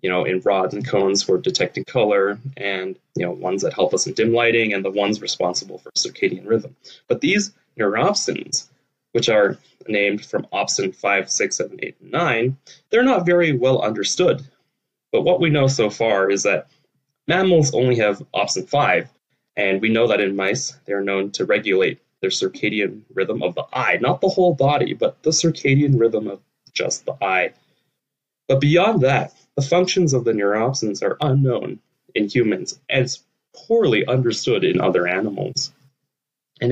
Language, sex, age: English, male, 20-39